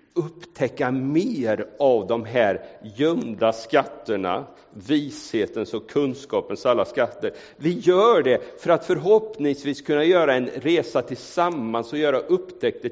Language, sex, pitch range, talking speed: Swedish, male, 120-175 Hz, 120 wpm